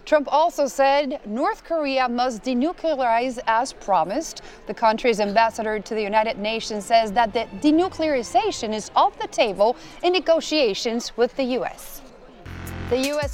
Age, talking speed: 30-49, 140 wpm